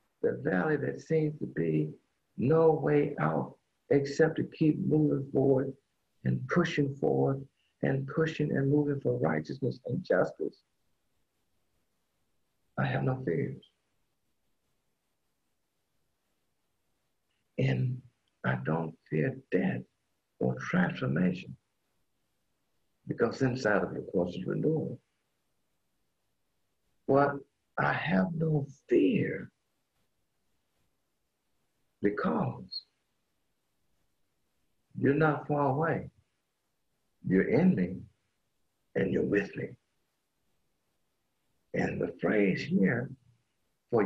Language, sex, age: English, male, 60-79